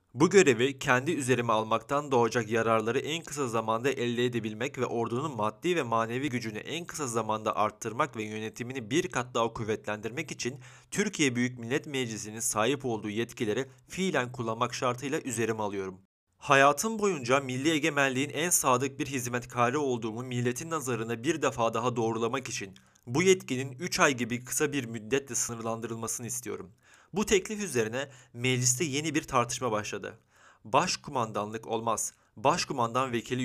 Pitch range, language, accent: 115-150 Hz, Turkish, native